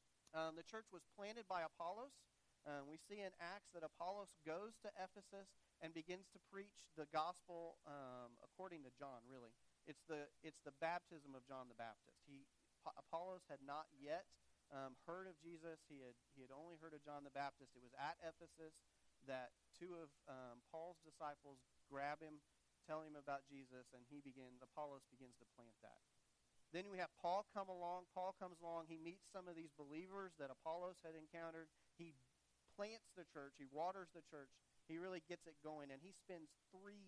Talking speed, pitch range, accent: 190 wpm, 130-170 Hz, American